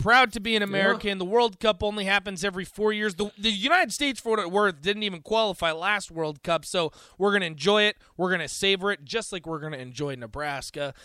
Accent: American